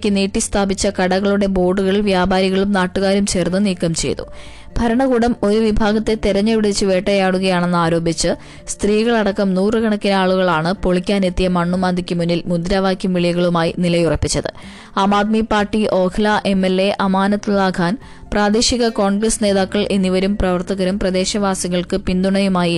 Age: 20-39